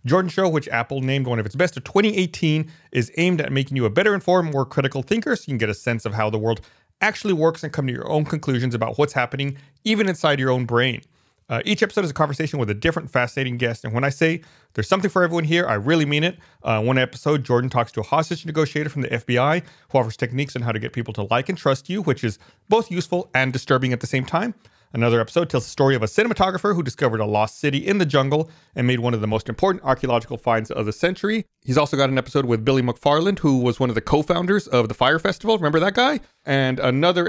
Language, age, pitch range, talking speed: English, 30-49, 120-165 Hz, 255 wpm